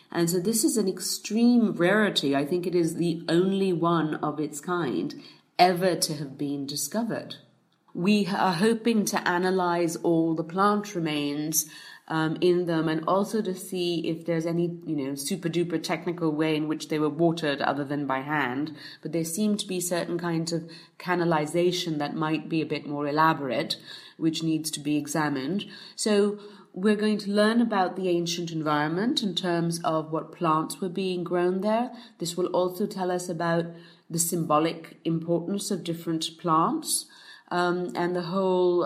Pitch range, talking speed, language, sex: 160-190 Hz, 170 wpm, English, female